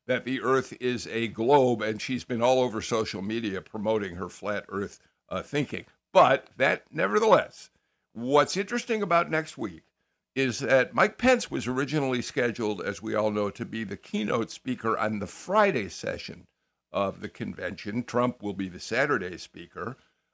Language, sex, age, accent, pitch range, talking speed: English, male, 60-79, American, 110-150 Hz, 160 wpm